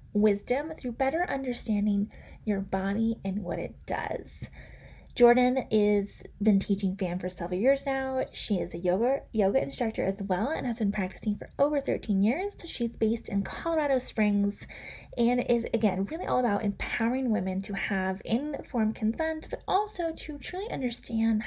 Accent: American